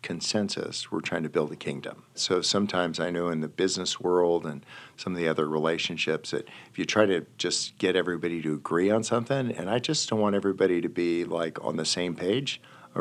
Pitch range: 85-115 Hz